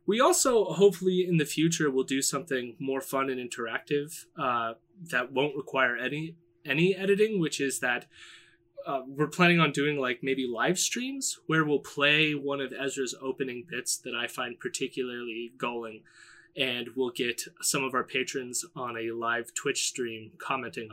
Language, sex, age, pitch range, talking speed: English, male, 20-39, 125-175 Hz, 165 wpm